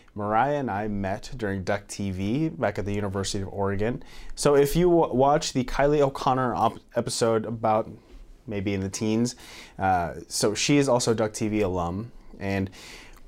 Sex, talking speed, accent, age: male, 160 wpm, American, 20-39